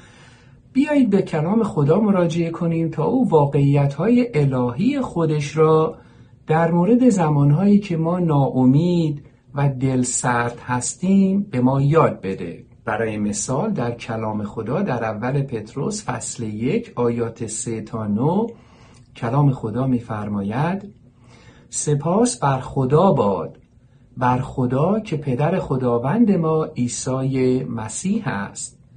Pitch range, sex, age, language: 120-165 Hz, male, 50-69, Persian